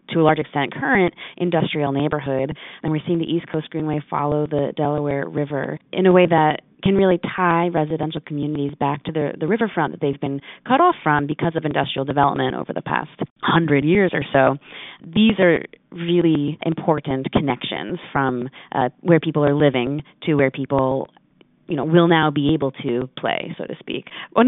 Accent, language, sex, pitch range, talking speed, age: American, English, female, 145-170 Hz, 185 wpm, 30-49